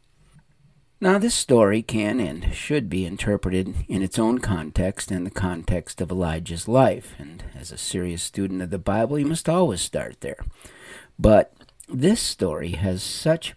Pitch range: 90-130 Hz